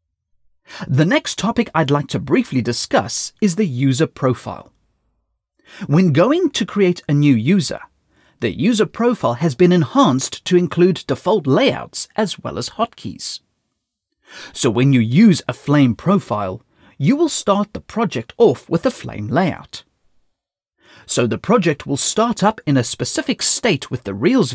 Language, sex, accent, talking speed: English, male, British, 155 wpm